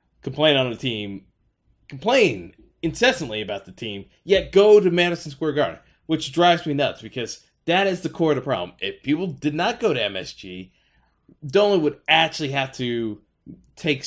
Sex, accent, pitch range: male, American, 110-150 Hz